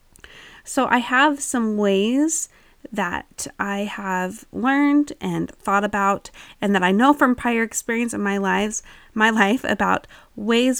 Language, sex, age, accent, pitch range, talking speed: English, female, 20-39, American, 185-235 Hz, 145 wpm